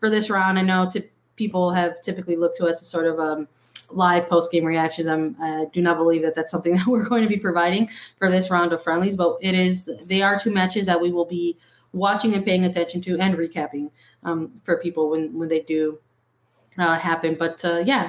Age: 20-39